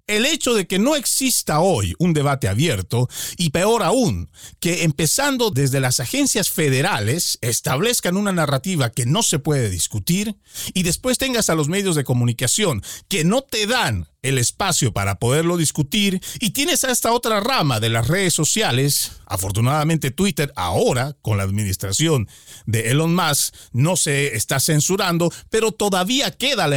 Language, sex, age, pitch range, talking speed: Spanish, male, 50-69, 135-215 Hz, 160 wpm